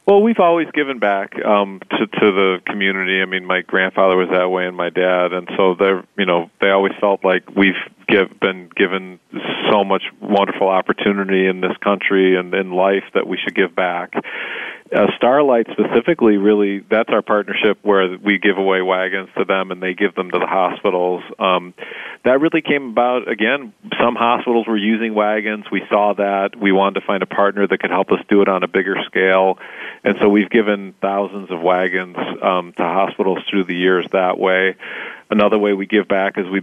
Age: 40-59